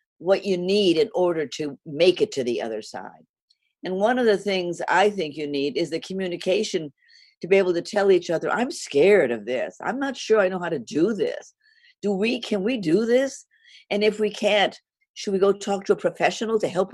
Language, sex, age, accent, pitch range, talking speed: English, female, 50-69, American, 170-225 Hz, 225 wpm